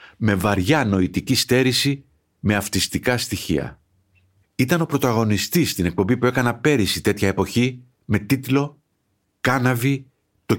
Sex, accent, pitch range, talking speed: male, native, 100-145 Hz, 120 wpm